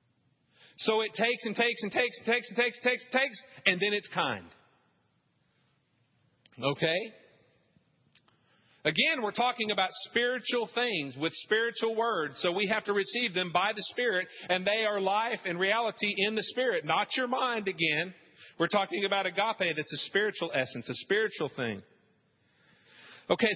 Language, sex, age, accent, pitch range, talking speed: English, male, 40-59, American, 185-245 Hz, 165 wpm